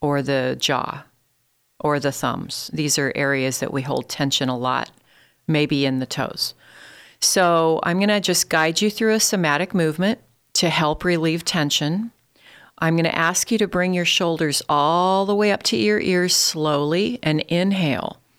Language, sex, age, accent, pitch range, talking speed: English, female, 40-59, American, 145-175 Hz, 175 wpm